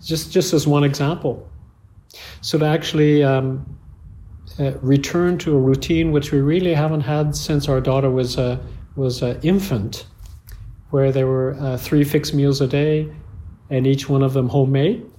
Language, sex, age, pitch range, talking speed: English, male, 50-69, 115-145 Hz, 165 wpm